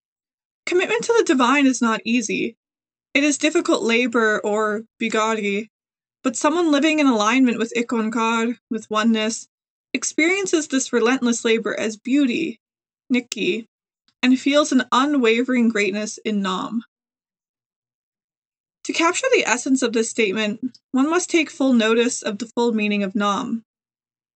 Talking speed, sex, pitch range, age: 135 wpm, female, 220-275 Hz, 20-39